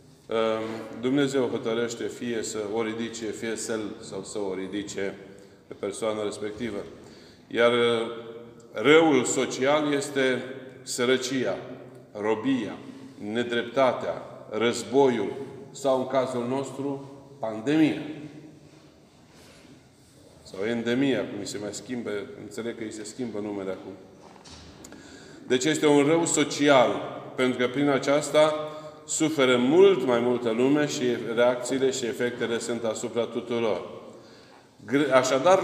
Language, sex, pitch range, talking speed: Romanian, male, 115-145 Hz, 105 wpm